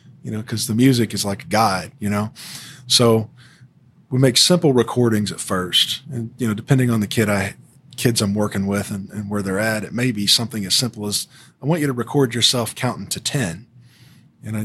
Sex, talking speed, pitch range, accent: male, 215 wpm, 105-130 Hz, American